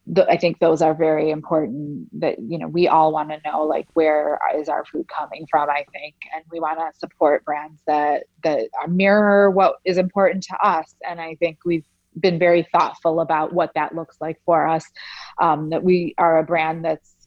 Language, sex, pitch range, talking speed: English, female, 155-175 Hz, 205 wpm